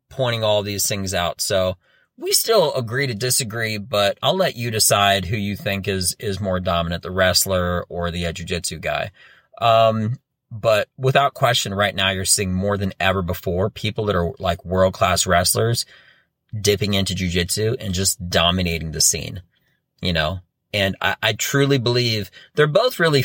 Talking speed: 175 wpm